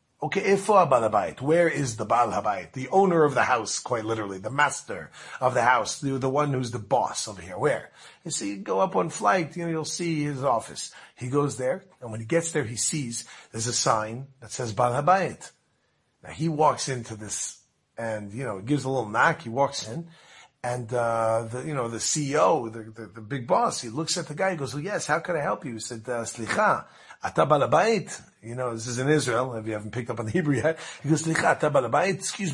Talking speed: 230 wpm